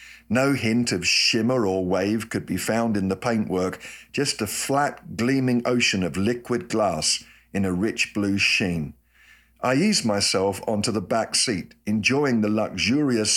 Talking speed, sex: 155 wpm, male